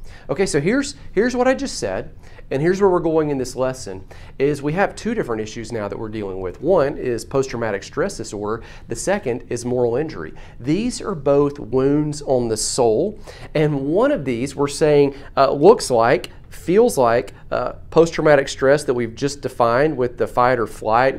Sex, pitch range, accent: male, 110-140 Hz, American